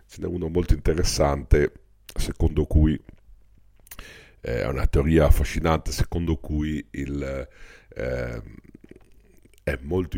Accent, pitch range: native, 70-85 Hz